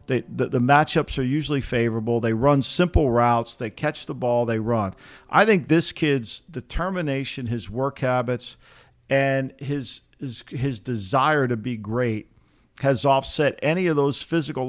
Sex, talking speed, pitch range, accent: male, 150 wpm, 120-145 Hz, American